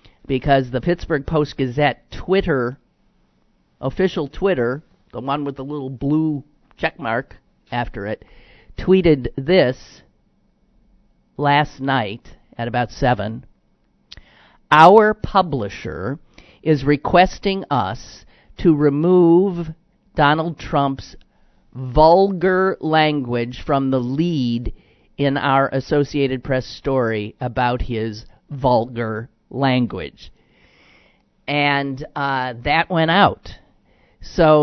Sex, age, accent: male, 50-69, American